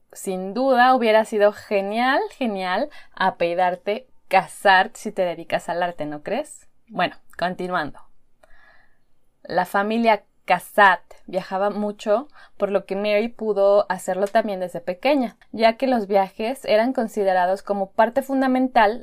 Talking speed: 125 wpm